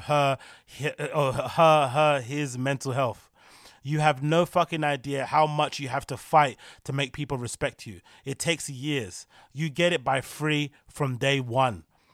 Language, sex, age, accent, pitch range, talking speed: English, male, 30-49, British, 135-165 Hz, 170 wpm